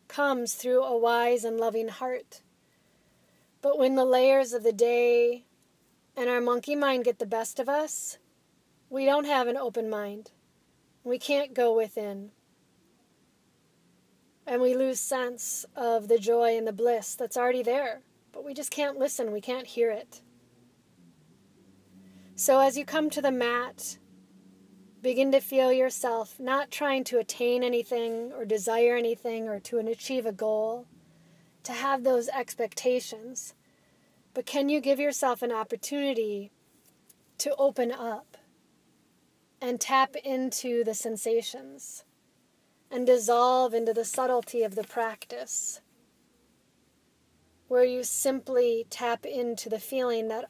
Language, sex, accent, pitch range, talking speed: English, female, American, 225-260 Hz, 135 wpm